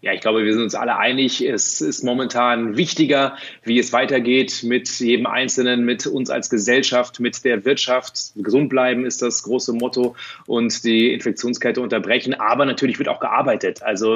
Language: German